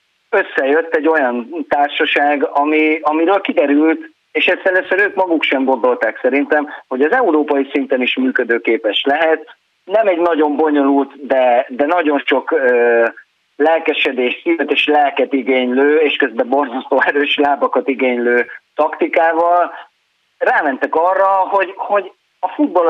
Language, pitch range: Hungarian, 130-165 Hz